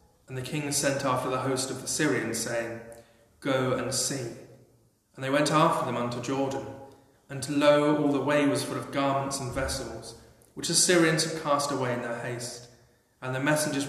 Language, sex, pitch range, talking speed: English, male, 120-145 Hz, 190 wpm